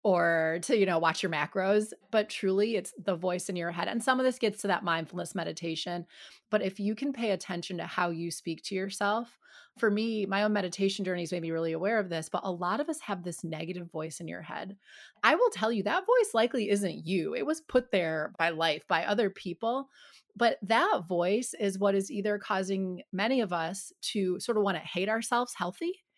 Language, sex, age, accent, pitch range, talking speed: English, female, 30-49, American, 180-235 Hz, 220 wpm